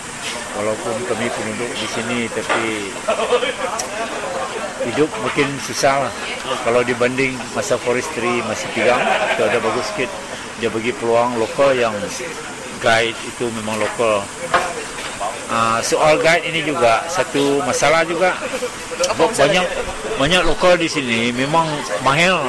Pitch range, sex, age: 120-155 Hz, male, 50-69